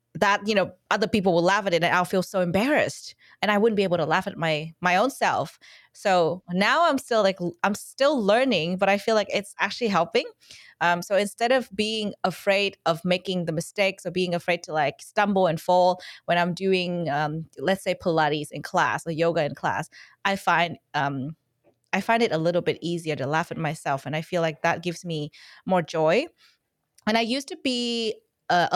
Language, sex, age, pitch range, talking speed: English, female, 20-39, 170-205 Hz, 210 wpm